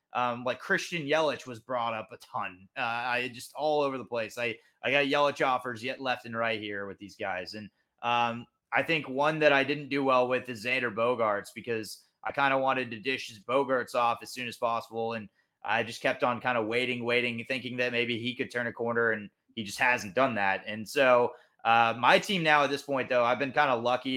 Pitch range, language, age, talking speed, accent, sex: 115-135 Hz, English, 20-39, 235 wpm, American, male